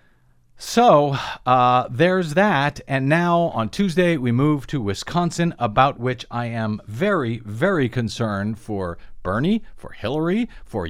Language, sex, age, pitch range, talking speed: English, male, 40-59, 105-145 Hz, 130 wpm